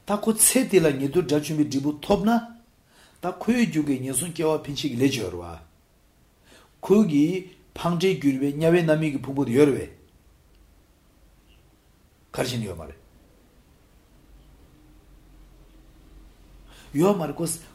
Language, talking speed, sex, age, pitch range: English, 45 wpm, male, 60-79, 110-160 Hz